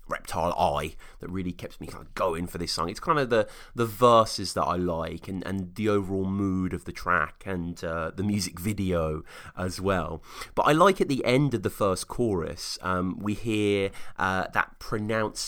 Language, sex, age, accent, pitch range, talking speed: English, male, 30-49, British, 90-120 Hz, 200 wpm